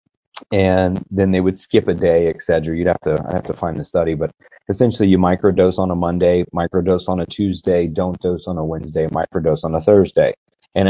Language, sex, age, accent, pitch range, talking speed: English, male, 30-49, American, 85-100 Hz, 220 wpm